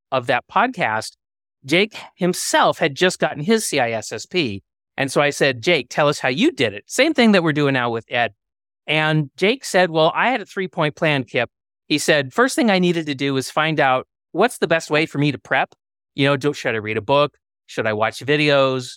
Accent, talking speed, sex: American, 220 wpm, male